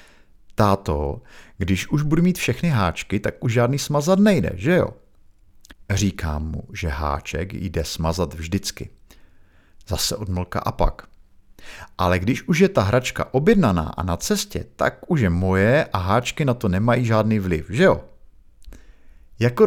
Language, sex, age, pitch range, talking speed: Czech, male, 50-69, 80-110 Hz, 150 wpm